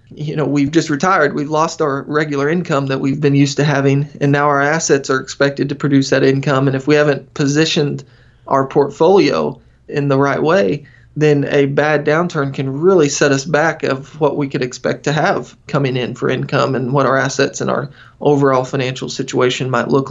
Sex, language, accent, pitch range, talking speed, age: male, English, American, 135-150 Hz, 205 wpm, 20-39